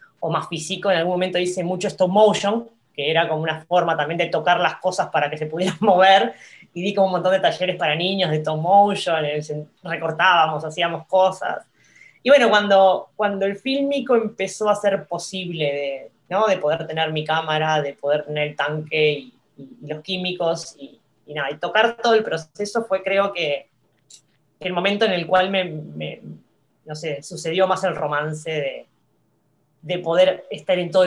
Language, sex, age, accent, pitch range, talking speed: Spanish, female, 20-39, Argentinian, 150-190 Hz, 185 wpm